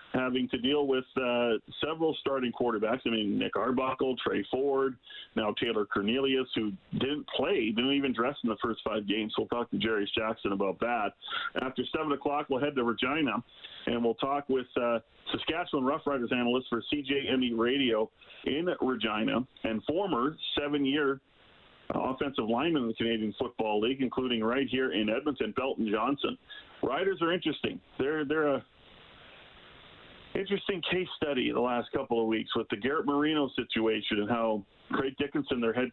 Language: English